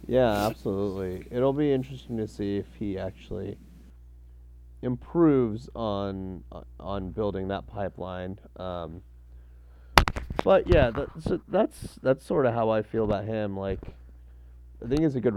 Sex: male